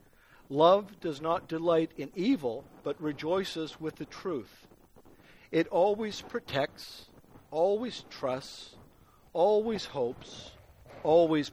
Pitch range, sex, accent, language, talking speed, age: 150-210 Hz, male, American, English, 100 wpm, 50-69